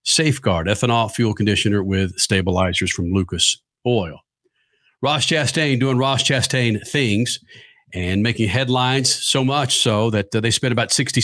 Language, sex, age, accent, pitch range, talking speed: English, male, 50-69, American, 110-140 Hz, 145 wpm